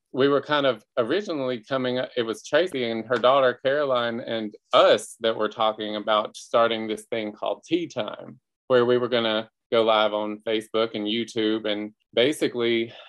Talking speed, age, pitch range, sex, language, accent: 175 wpm, 30-49, 110-140 Hz, male, English, American